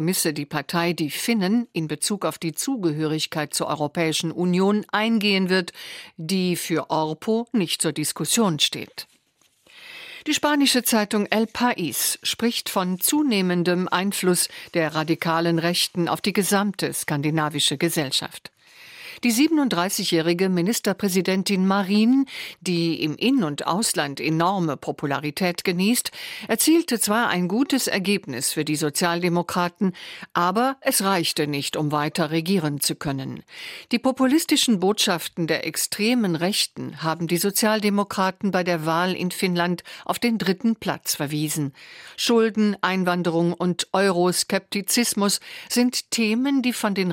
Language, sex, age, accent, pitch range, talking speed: German, female, 50-69, German, 165-215 Hz, 120 wpm